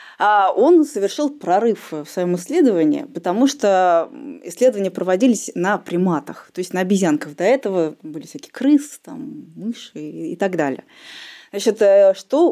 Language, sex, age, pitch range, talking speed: Russian, female, 20-39, 185-275 Hz, 130 wpm